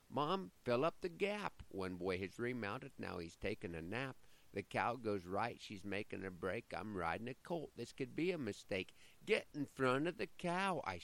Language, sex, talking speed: English, male, 205 wpm